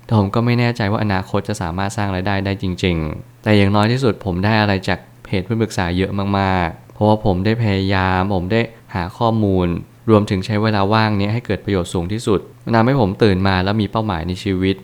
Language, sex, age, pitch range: Thai, male, 20-39, 95-115 Hz